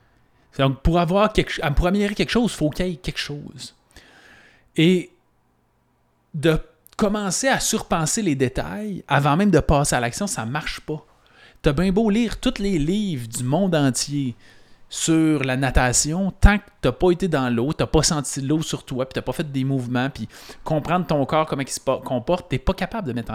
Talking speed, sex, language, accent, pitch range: 215 wpm, male, French, Canadian, 130-180 Hz